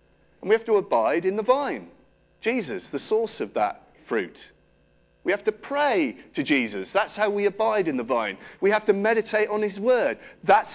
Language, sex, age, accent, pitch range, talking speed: English, male, 40-59, British, 155-215 Hz, 195 wpm